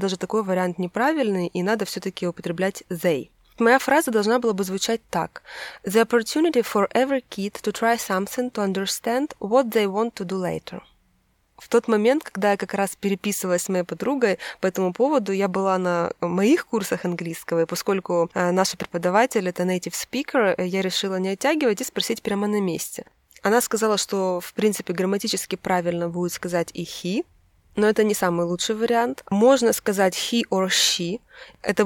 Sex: female